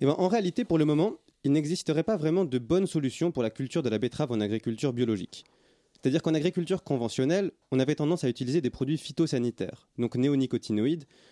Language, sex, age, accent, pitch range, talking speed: French, male, 30-49, French, 120-165 Hz, 195 wpm